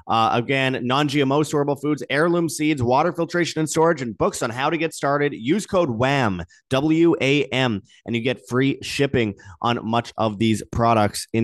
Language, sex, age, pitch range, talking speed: English, male, 30-49, 105-145 Hz, 175 wpm